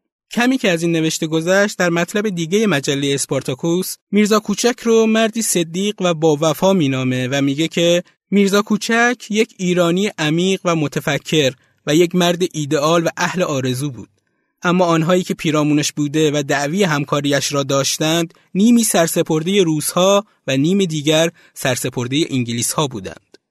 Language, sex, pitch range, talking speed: Persian, male, 140-185 Hz, 150 wpm